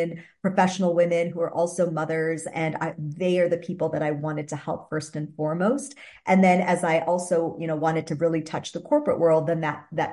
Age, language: 40-59, English